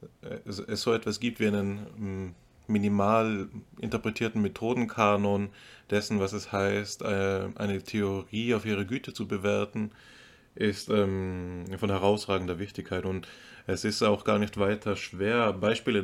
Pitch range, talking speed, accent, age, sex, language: 95-105 Hz, 125 wpm, German, 20-39, male, German